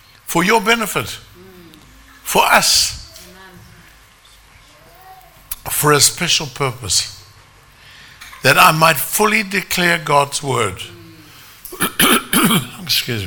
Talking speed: 75 wpm